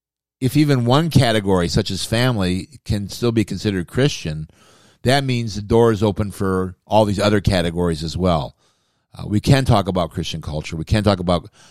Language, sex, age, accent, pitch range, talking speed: English, male, 50-69, American, 85-115 Hz, 185 wpm